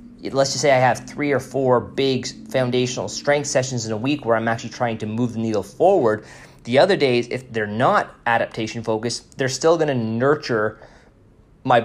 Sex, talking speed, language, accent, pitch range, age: male, 185 wpm, English, American, 110-130 Hz, 20-39